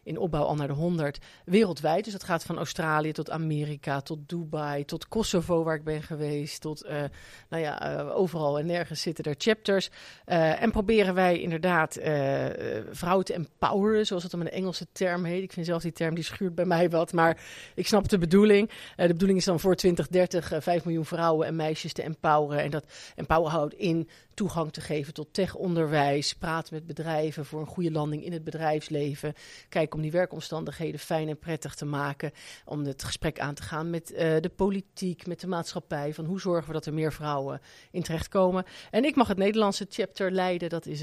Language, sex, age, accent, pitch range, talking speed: Dutch, female, 40-59, Dutch, 150-180 Hz, 205 wpm